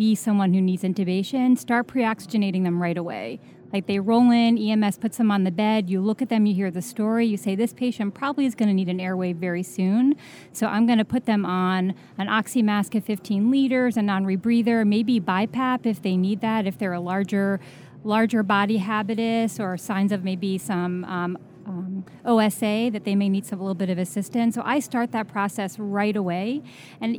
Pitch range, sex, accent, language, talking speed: 195-230 Hz, female, American, English, 205 wpm